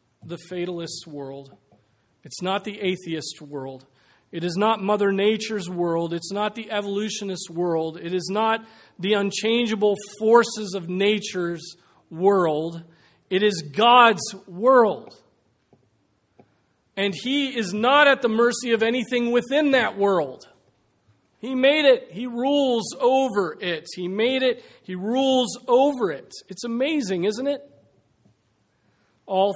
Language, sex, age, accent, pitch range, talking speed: English, male, 40-59, American, 170-220 Hz, 130 wpm